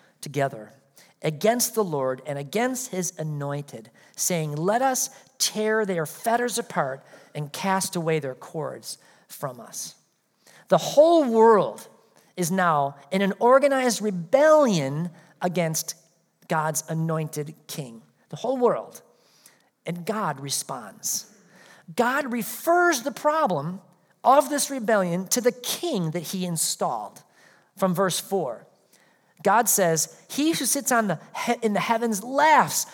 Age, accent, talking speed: 40-59, American, 125 wpm